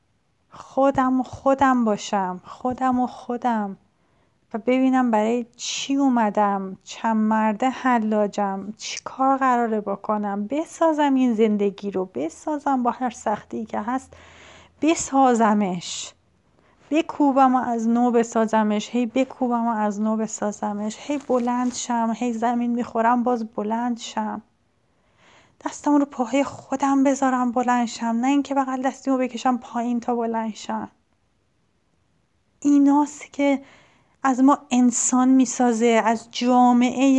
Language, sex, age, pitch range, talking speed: Persian, female, 30-49, 210-260 Hz, 120 wpm